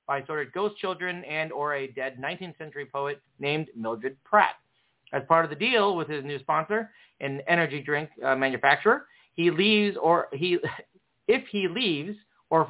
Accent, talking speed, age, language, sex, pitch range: American, 165 wpm, 40-59, English, male, 140-185 Hz